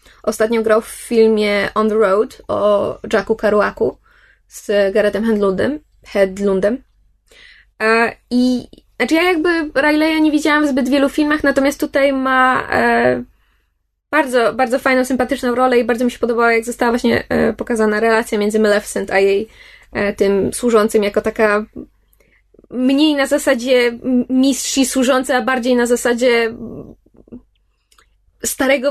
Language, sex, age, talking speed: Polish, female, 20-39, 130 wpm